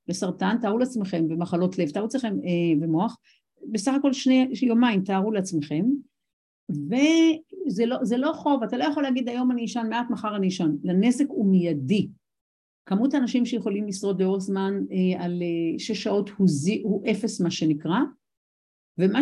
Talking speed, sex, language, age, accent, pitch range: 160 wpm, female, Hebrew, 50-69, native, 185-240 Hz